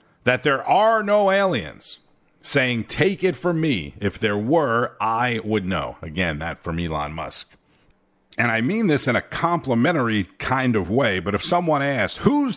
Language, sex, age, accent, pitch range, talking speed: English, male, 50-69, American, 100-140 Hz, 170 wpm